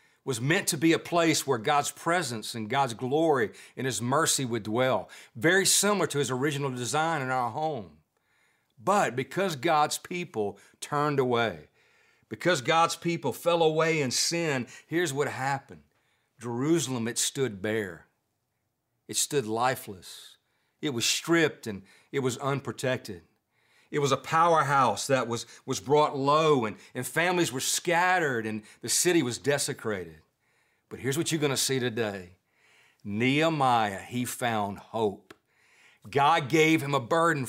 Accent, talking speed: American, 145 wpm